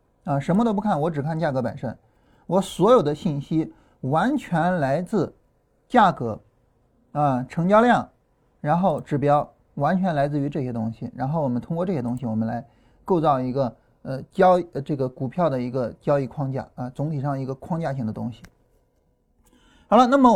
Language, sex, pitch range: Chinese, male, 125-180 Hz